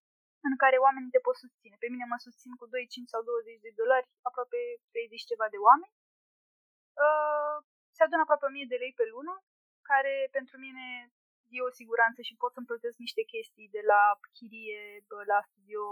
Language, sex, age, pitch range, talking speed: Romanian, female, 20-39, 220-335 Hz, 180 wpm